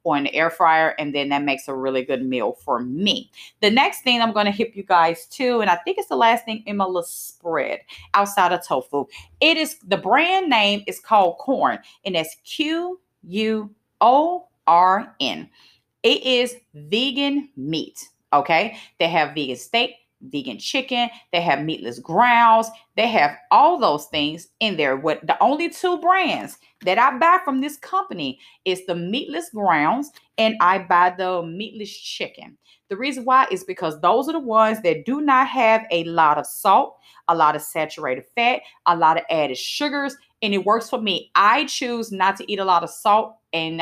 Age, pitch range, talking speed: 30-49, 175-245 Hz, 190 wpm